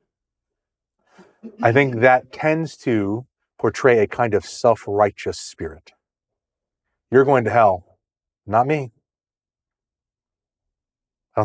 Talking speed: 100 wpm